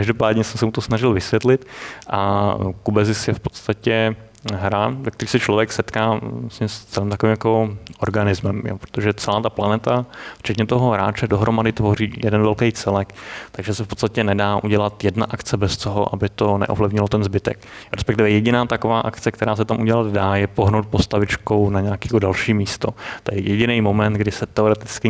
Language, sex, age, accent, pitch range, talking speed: Czech, male, 20-39, native, 100-110 Hz, 175 wpm